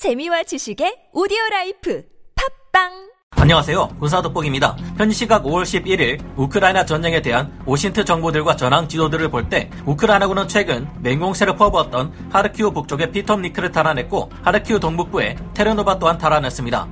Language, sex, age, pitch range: Korean, male, 40-59, 140-190 Hz